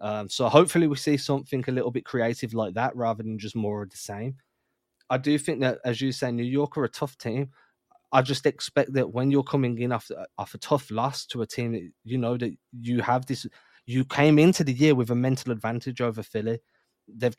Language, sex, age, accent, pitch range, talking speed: English, male, 20-39, British, 115-140 Hz, 230 wpm